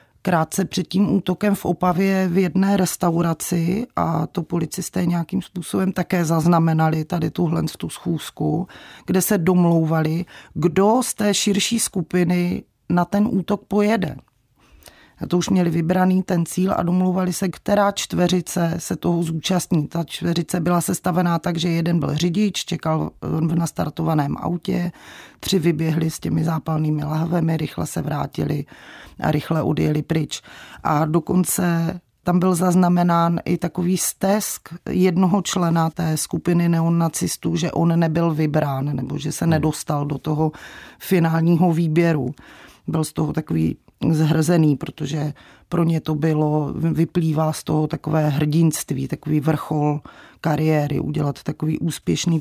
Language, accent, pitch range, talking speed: Czech, native, 160-185 Hz, 135 wpm